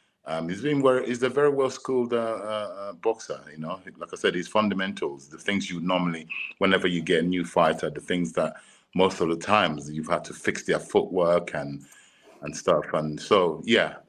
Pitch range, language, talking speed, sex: 80-95 Hz, English, 205 wpm, male